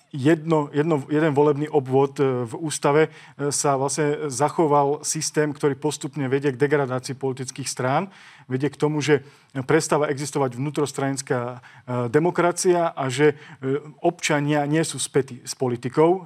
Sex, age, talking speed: male, 40-59, 125 wpm